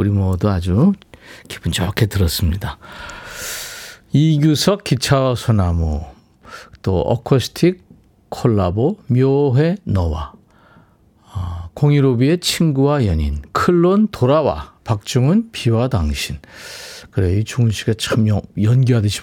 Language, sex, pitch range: Korean, male, 105-155 Hz